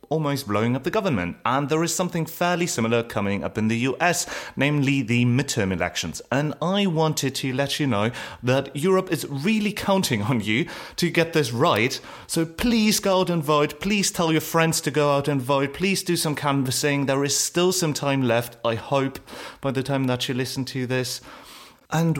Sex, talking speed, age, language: male, 200 wpm, 30-49, English